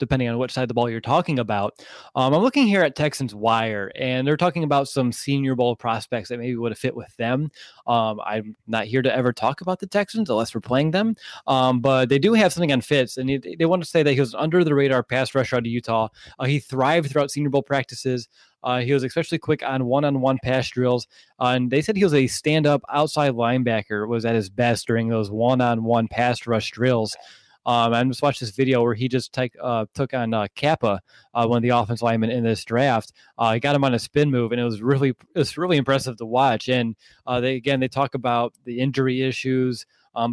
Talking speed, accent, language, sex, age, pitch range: 240 wpm, American, English, male, 20-39, 120-140 Hz